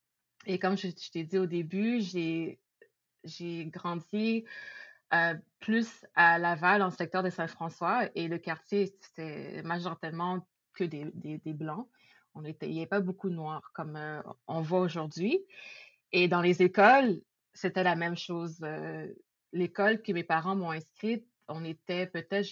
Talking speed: 160 wpm